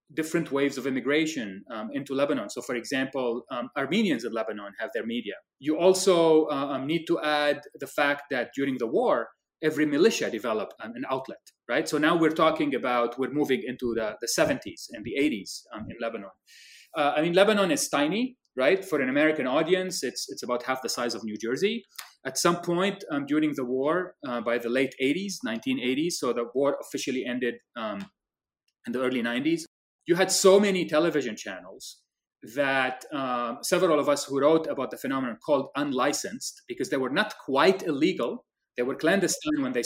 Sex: male